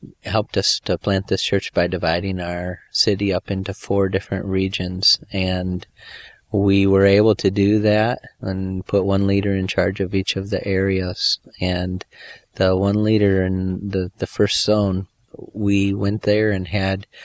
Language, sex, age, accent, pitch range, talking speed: English, male, 30-49, American, 95-100 Hz, 165 wpm